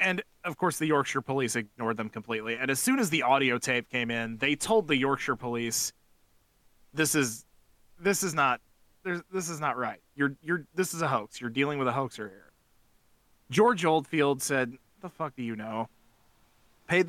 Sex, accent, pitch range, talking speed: male, American, 115-150 Hz, 185 wpm